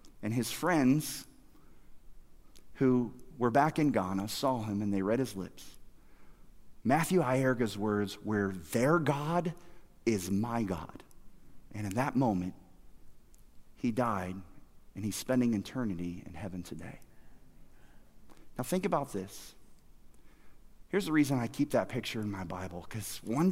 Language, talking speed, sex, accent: English, 135 wpm, male, American